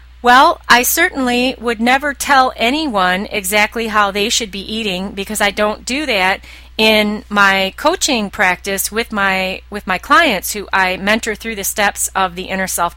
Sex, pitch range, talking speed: female, 185-250 Hz, 170 wpm